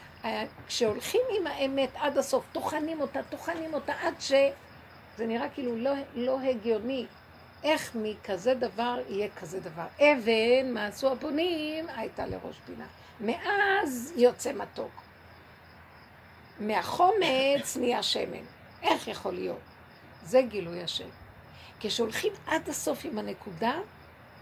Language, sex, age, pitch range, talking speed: Hebrew, female, 50-69, 220-290 Hz, 115 wpm